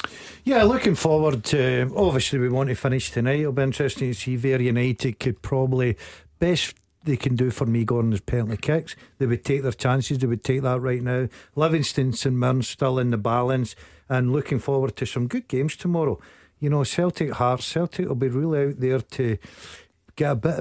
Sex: male